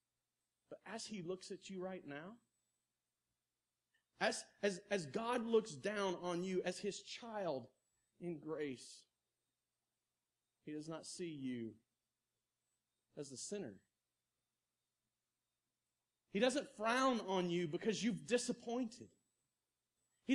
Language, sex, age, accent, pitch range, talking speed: English, male, 40-59, American, 130-185 Hz, 110 wpm